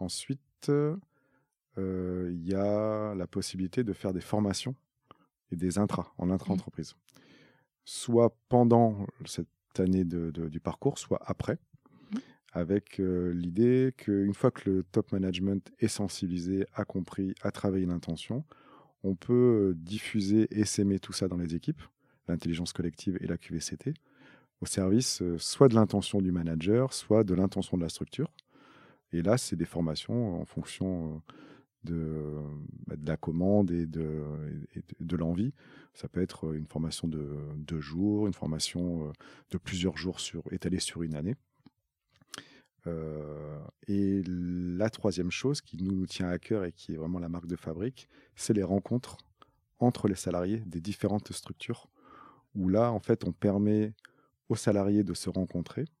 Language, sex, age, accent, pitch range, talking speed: French, male, 30-49, French, 85-105 Hz, 155 wpm